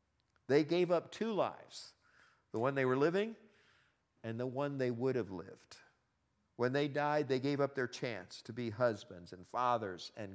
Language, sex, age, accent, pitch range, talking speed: English, male, 50-69, American, 105-145 Hz, 180 wpm